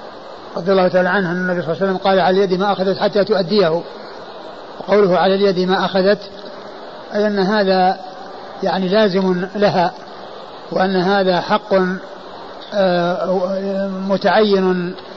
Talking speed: 120 wpm